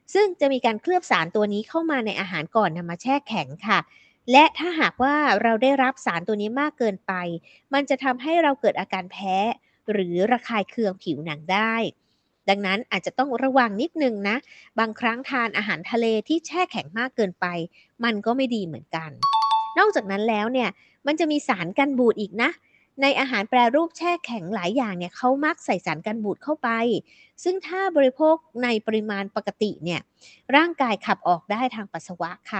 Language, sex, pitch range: Thai, female, 195-275 Hz